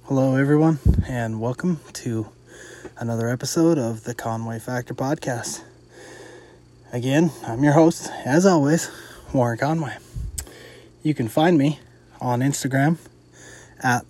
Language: English